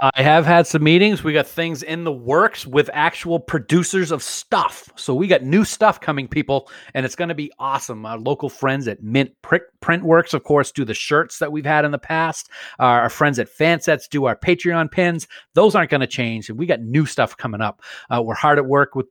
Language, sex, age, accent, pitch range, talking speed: English, male, 40-59, American, 130-170 Hz, 230 wpm